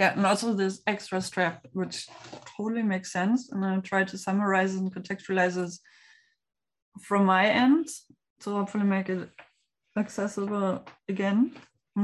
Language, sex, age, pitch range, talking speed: English, female, 20-39, 190-215 Hz, 145 wpm